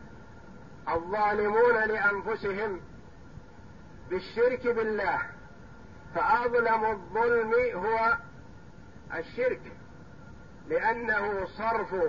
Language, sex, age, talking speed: Arabic, male, 50-69, 50 wpm